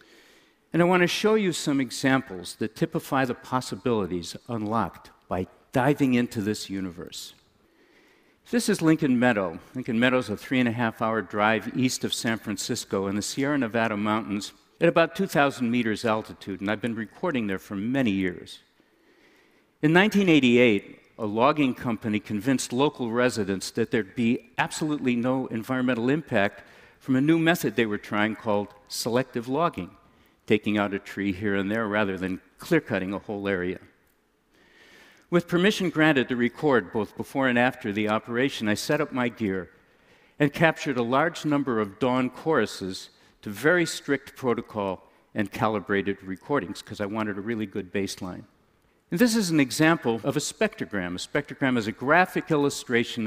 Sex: male